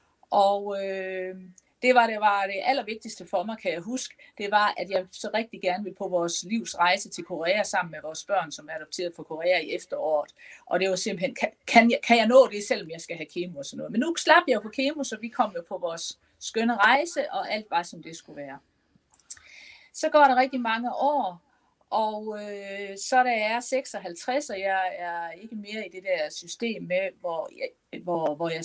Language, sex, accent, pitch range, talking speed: Danish, female, native, 175-245 Hz, 220 wpm